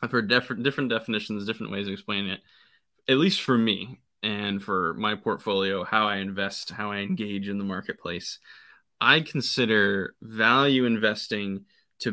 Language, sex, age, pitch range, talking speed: English, male, 20-39, 100-130 Hz, 155 wpm